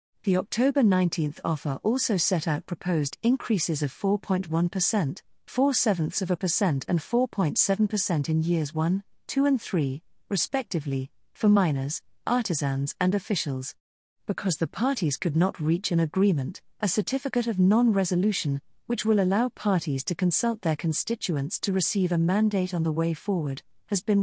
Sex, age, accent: female, 40-59, British